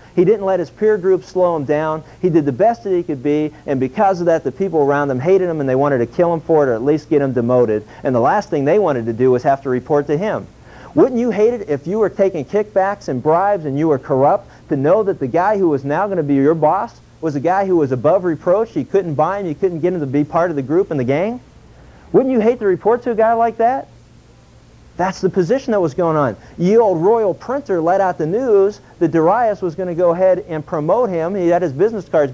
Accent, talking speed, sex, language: American, 275 wpm, male, English